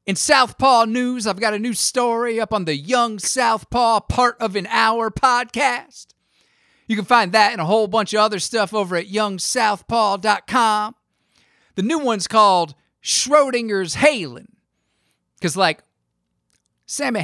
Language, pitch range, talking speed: English, 160-230 Hz, 145 wpm